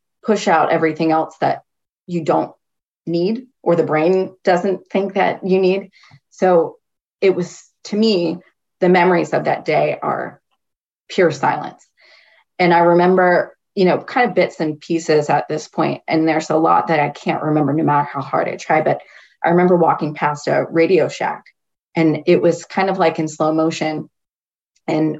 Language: English